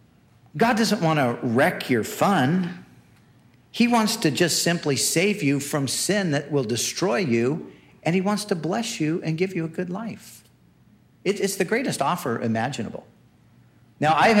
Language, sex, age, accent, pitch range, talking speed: English, male, 50-69, American, 120-175 Hz, 160 wpm